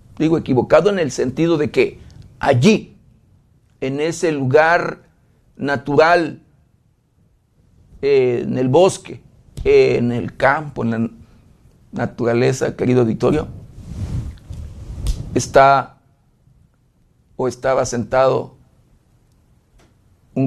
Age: 50-69